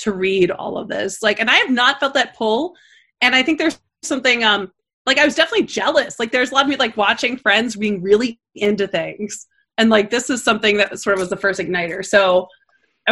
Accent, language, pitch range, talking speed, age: American, English, 195-240 Hz, 235 wpm, 30-49